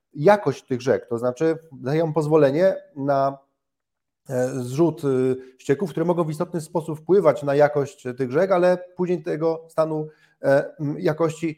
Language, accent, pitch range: Polish, native, 145-180 Hz